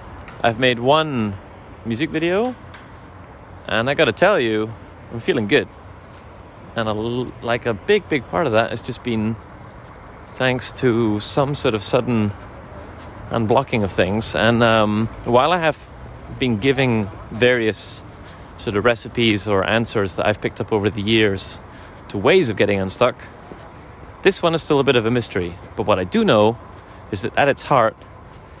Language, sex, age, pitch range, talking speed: English, male, 30-49, 95-115 Hz, 160 wpm